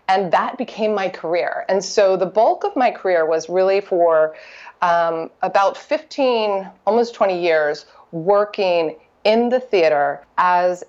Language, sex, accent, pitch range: English, female, American, 170-215 Hz